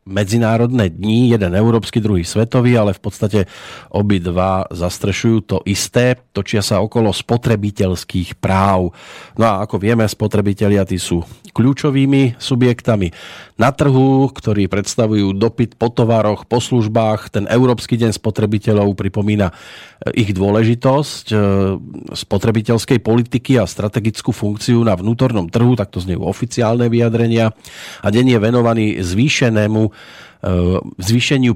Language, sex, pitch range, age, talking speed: Slovak, male, 100-120 Hz, 40-59, 120 wpm